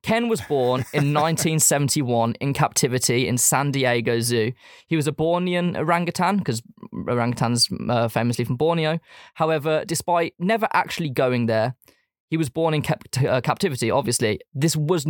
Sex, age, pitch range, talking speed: male, 20-39, 120-155 Hz, 145 wpm